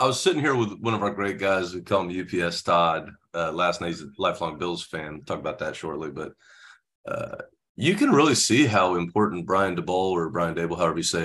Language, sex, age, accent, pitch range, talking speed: English, male, 40-59, American, 90-120 Hz, 230 wpm